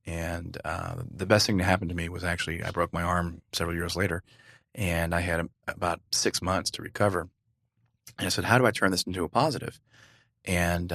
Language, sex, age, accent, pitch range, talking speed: English, male, 30-49, American, 85-115 Hz, 210 wpm